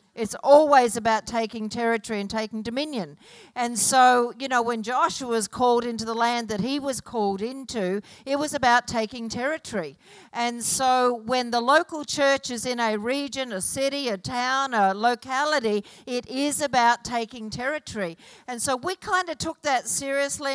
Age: 50-69